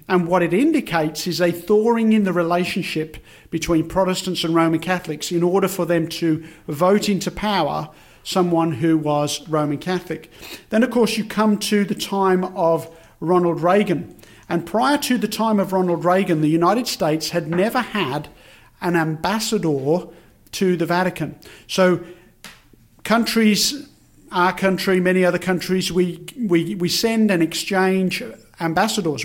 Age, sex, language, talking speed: 50-69, male, English, 150 wpm